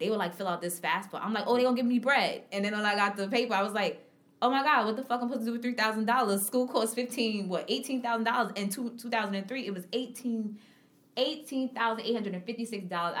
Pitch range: 170-230 Hz